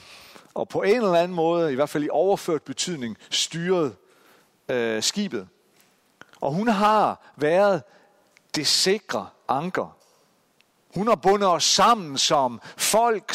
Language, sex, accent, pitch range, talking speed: Danish, male, native, 130-195 Hz, 130 wpm